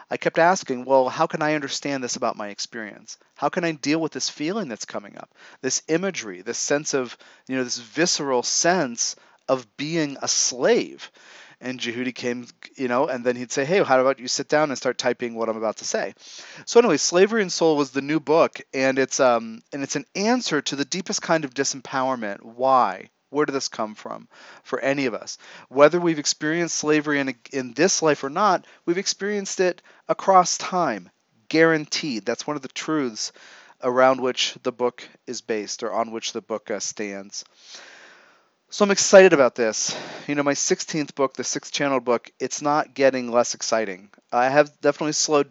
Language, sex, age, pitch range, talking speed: English, male, 40-59, 120-155 Hz, 195 wpm